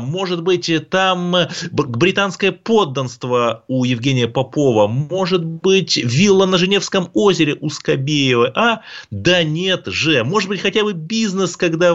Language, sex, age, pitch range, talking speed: Russian, male, 30-49, 125-180 Hz, 130 wpm